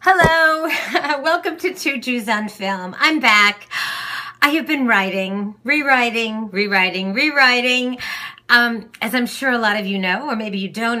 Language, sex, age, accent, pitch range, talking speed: English, female, 40-59, American, 205-260 Hz, 160 wpm